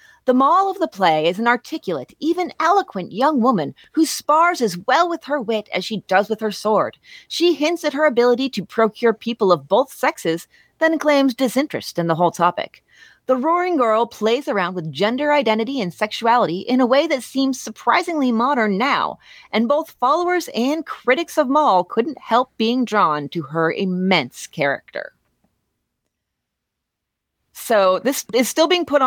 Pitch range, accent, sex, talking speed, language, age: 180-260 Hz, American, female, 170 wpm, English, 30-49